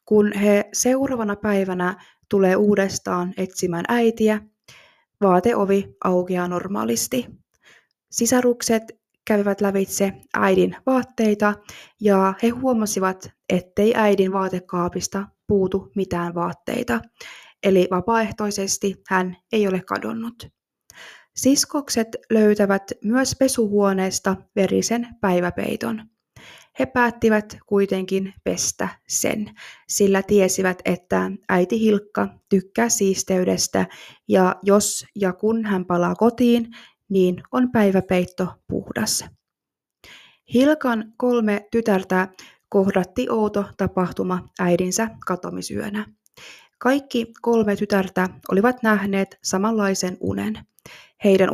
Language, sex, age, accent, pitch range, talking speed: Finnish, female, 20-39, native, 185-225 Hz, 90 wpm